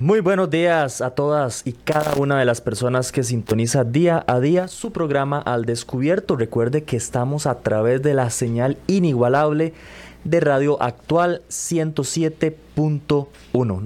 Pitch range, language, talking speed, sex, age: 110-150 Hz, Spanish, 145 wpm, male, 20-39